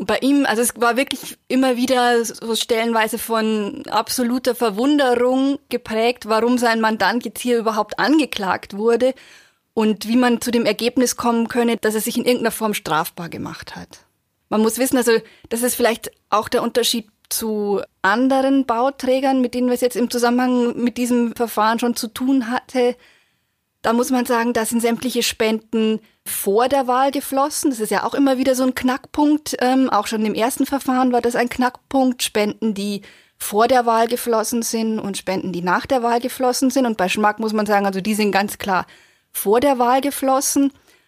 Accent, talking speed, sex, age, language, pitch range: German, 185 wpm, female, 20-39, German, 210-250 Hz